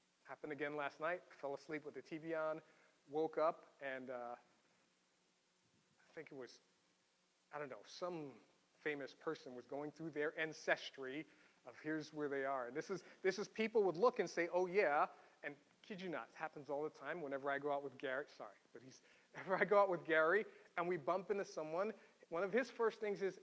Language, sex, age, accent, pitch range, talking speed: English, male, 40-59, American, 150-180 Hz, 205 wpm